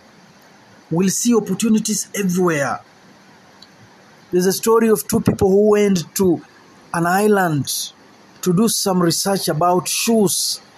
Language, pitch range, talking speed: Swahili, 170-210 Hz, 115 wpm